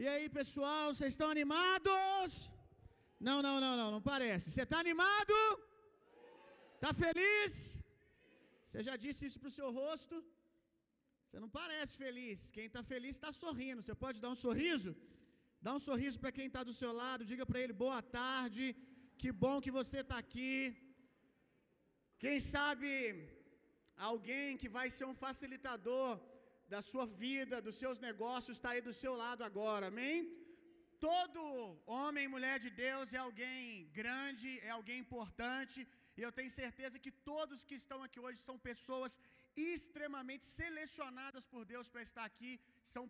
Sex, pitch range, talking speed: male, 235-275 Hz, 155 wpm